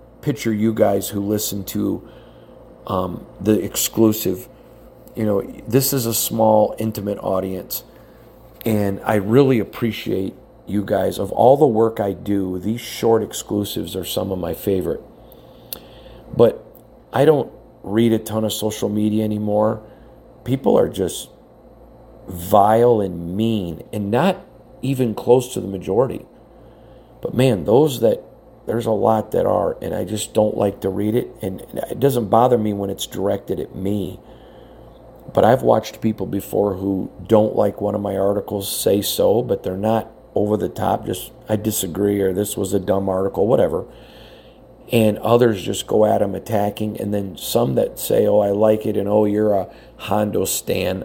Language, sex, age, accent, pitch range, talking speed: English, male, 50-69, American, 100-110 Hz, 165 wpm